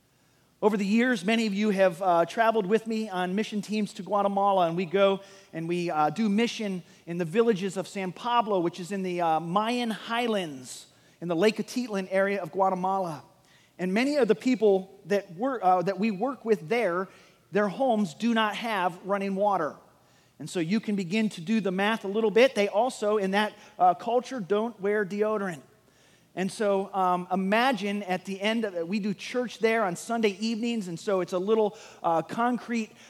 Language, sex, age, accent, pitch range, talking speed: English, male, 40-59, American, 190-235 Hz, 195 wpm